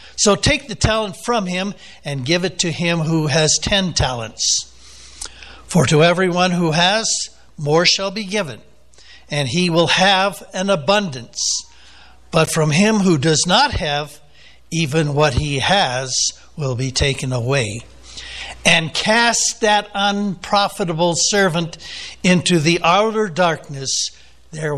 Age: 60-79